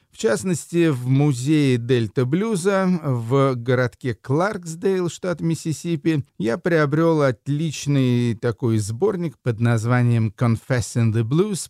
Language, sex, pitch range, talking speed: Russian, male, 115-150 Hz, 110 wpm